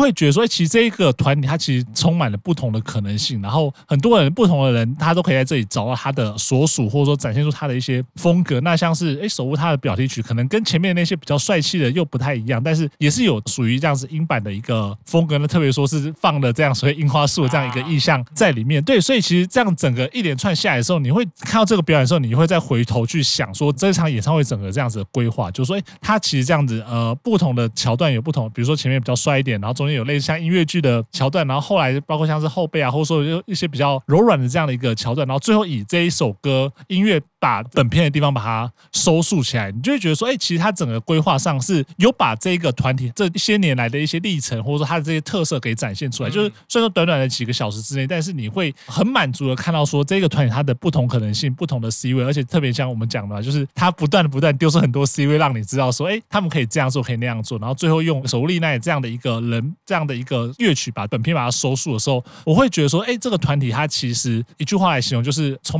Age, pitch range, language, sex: 20-39, 125-165 Hz, Chinese, male